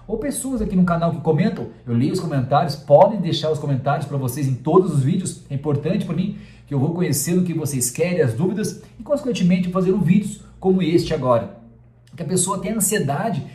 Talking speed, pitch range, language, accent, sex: 215 wpm, 155-190 Hz, Portuguese, Brazilian, male